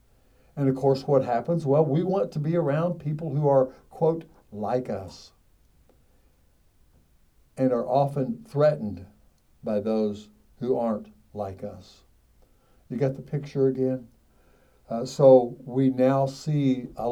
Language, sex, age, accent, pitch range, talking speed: English, male, 60-79, American, 120-145 Hz, 135 wpm